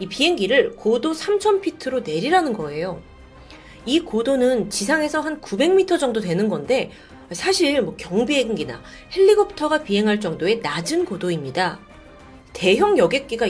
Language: Korean